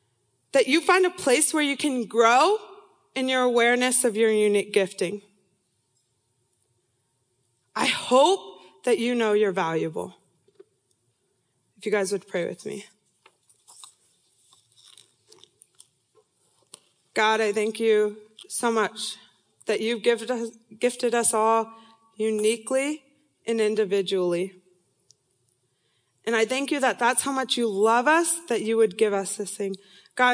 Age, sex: 20-39, female